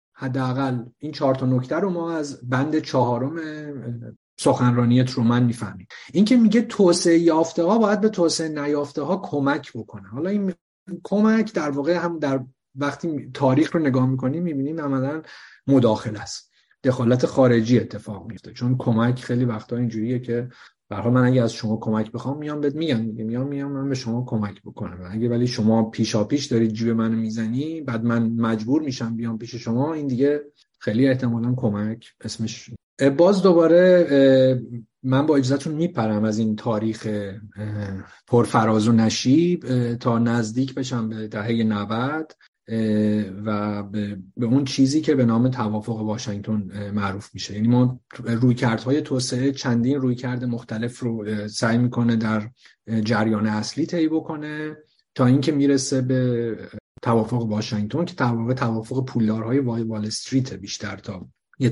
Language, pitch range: Persian, 110-140 Hz